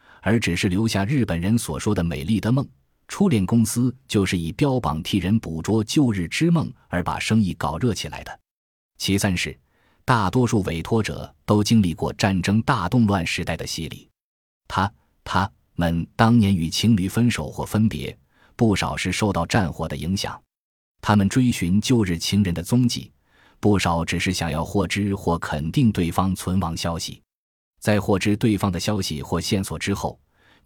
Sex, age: male, 20-39